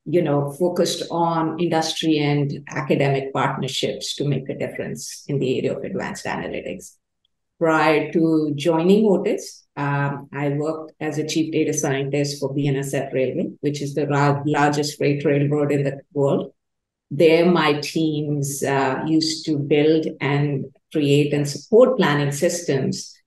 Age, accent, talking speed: 50-69, Indian, 140 wpm